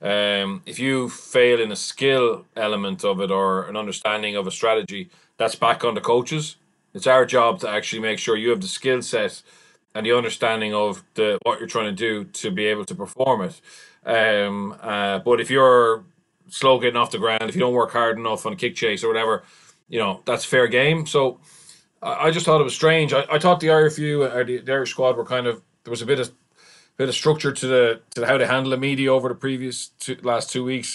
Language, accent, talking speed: English, Irish, 235 wpm